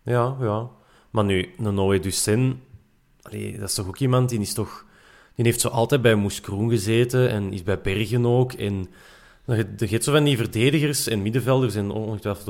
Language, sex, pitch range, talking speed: Dutch, male, 100-125 Hz, 180 wpm